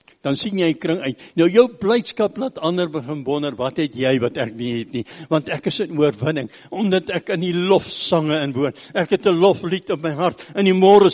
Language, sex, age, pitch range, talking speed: English, male, 60-79, 170-215 Hz, 230 wpm